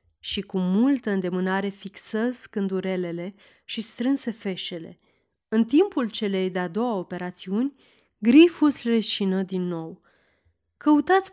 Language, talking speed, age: Romanian, 105 wpm, 30-49